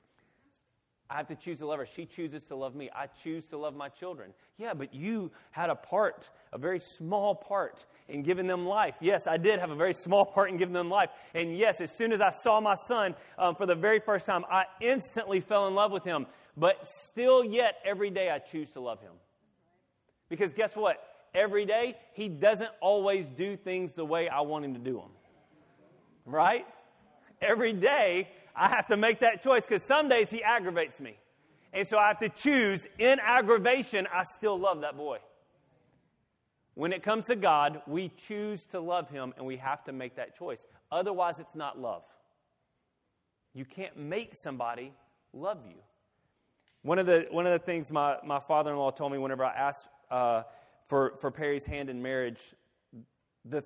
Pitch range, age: 145-210 Hz, 30-49